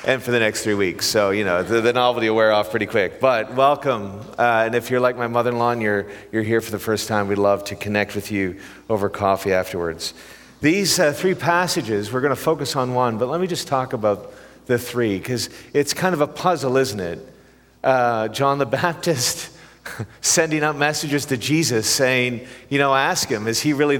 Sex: male